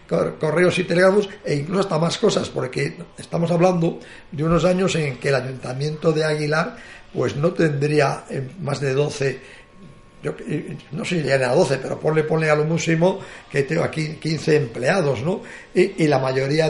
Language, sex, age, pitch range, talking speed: Spanish, male, 50-69, 140-175 Hz, 175 wpm